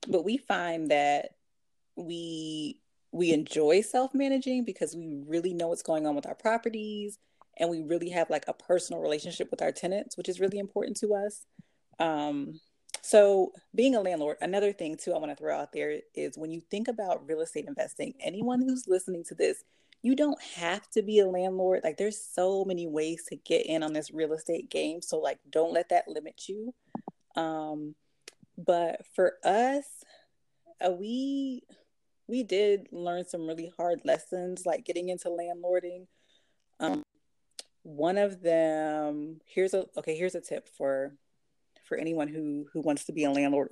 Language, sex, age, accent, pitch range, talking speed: English, female, 30-49, American, 160-235 Hz, 175 wpm